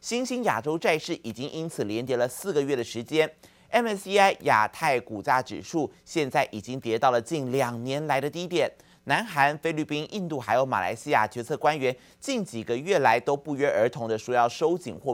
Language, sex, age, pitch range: Chinese, male, 30-49, 125-175 Hz